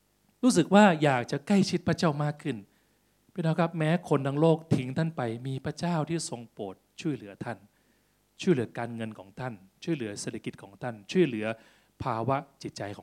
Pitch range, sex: 110-150 Hz, male